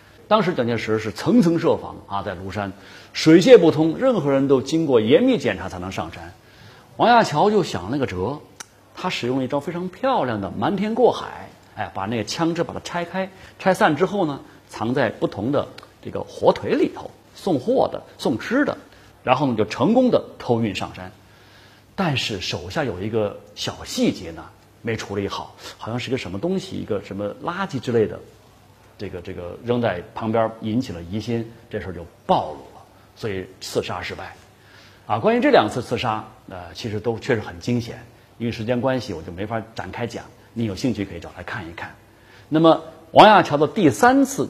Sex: male